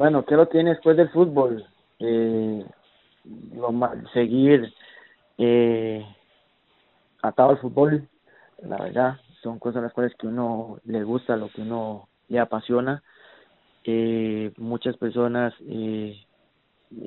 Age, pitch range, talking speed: 30-49, 115-130 Hz, 120 wpm